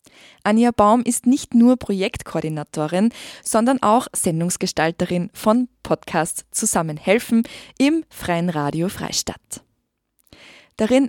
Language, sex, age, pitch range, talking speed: German, female, 20-39, 185-245 Hz, 90 wpm